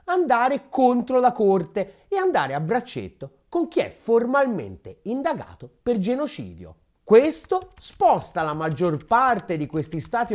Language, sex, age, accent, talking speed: Italian, male, 30-49, native, 135 wpm